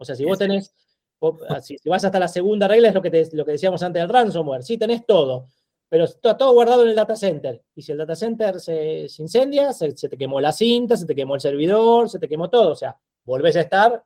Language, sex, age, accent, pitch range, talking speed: Spanish, male, 30-49, Argentinian, 155-215 Hz, 255 wpm